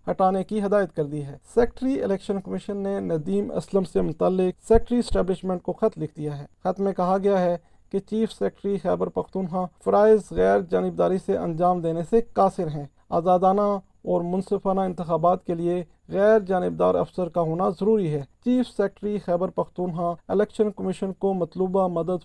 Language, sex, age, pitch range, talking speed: Urdu, male, 40-59, 175-210 Hz, 165 wpm